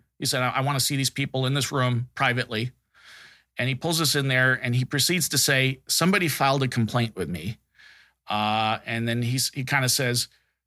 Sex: male